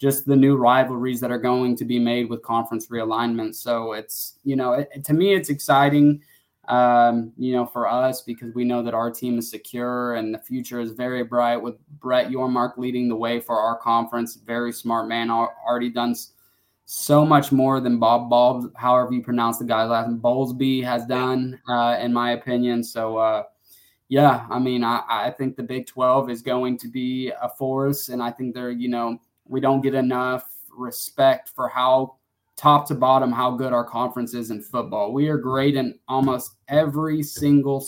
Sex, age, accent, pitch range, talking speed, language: male, 20-39, American, 120-130 Hz, 190 wpm, English